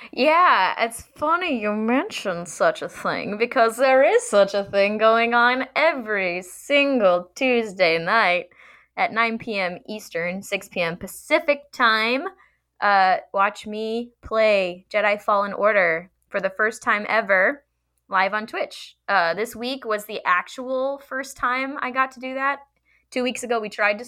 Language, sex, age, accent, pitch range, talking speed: English, female, 10-29, American, 180-240 Hz, 155 wpm